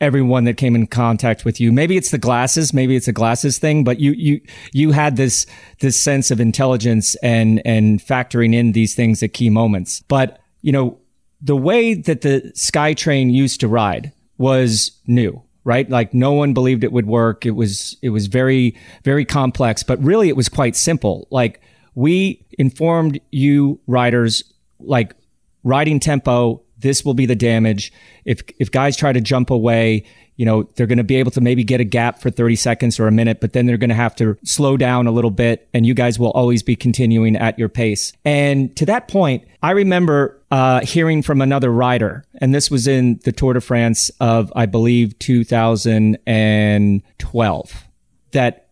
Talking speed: 190 wpm